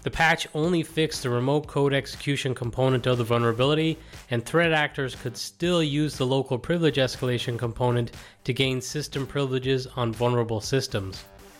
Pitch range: 120-145 Hz